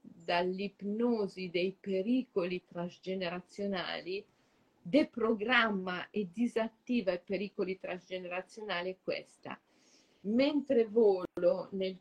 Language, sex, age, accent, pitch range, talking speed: Italian, female, 40-59, native, 175-215 Hz, 70 wpm